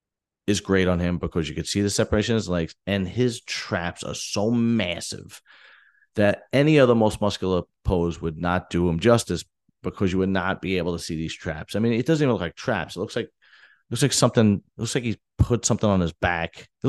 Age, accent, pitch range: 30-49, American, 85-110 Hz